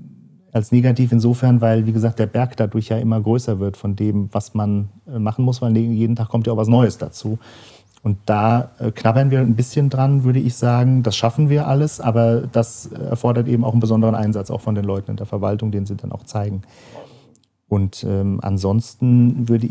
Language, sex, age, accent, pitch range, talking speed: German, male, 40-59, German, 110-125 Hz, 200 wpm